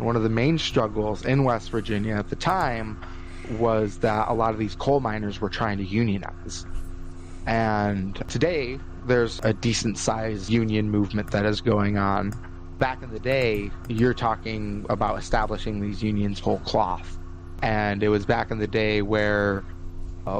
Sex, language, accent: male, English, American